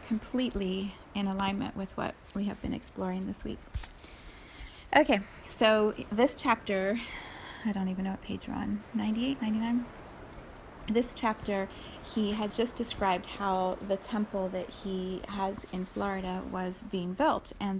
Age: 30-49